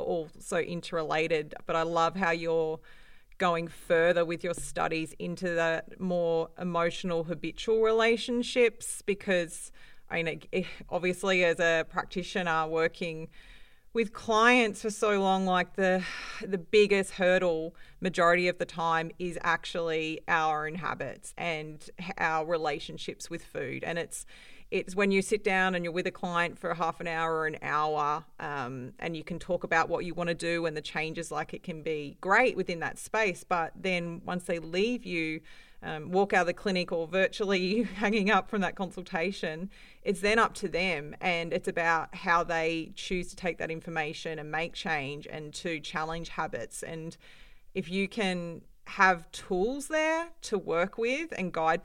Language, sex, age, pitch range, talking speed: English, female, 40-59, 165-195 Hz, 165 wpm